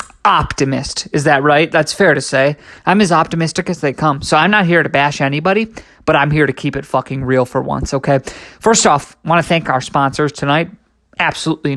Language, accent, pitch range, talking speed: English, American, 135-165 Hz, 215 wpm